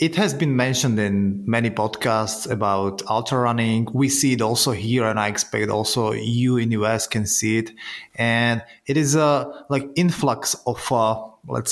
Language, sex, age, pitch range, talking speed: Slovak, male, 20-39, 115-140 Hz, 180 wpm